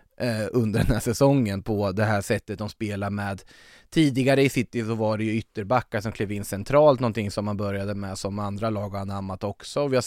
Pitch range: 105-135 Hz